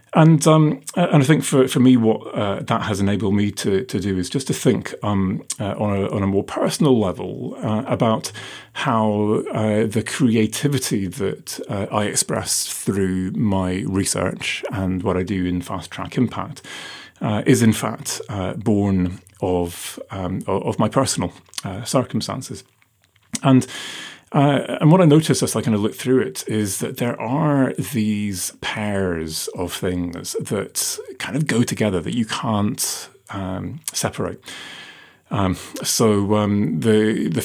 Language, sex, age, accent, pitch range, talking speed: English, male, 30-49, British, 95-125 Hz, 160 wpm